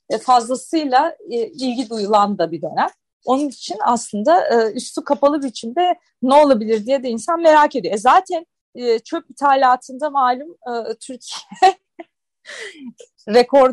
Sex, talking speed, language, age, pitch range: female, 110 wpm, Turkish, 30-49, 200-315 Hz